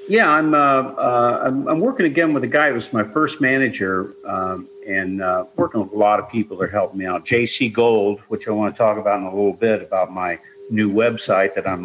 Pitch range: 105-140 Hz